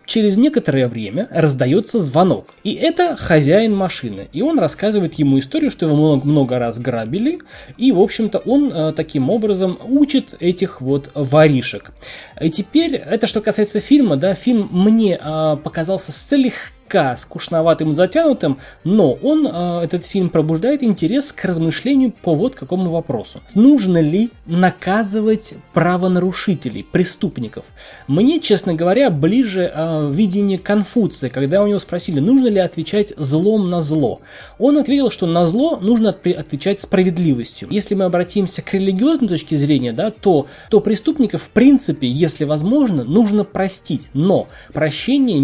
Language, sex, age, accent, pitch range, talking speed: Russian, male, 20-39, native, 150-215 Hz, 140 wpm